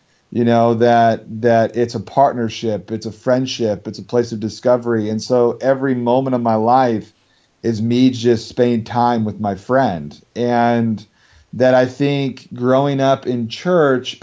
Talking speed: 160 wpm